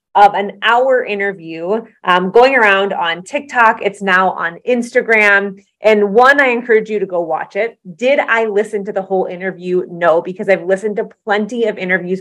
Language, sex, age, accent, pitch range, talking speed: English, female, 30-49, American, 190-235 Hz, 180 wpm